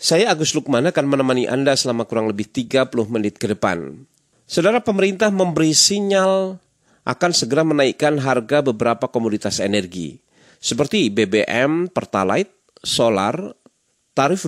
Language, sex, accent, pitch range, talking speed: Indonesian, male, native, 110-145 Hz, 120 wpm